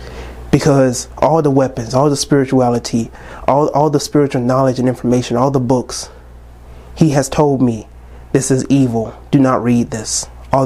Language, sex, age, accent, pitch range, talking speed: English, male, 30-49, American, 110-165 Hz, 165 wpm